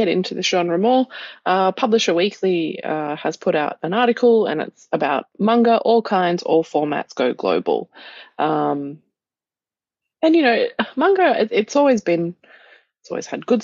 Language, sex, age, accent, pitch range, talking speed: English, female, 20-39, Australian, 170-230 Hz, 160 wpm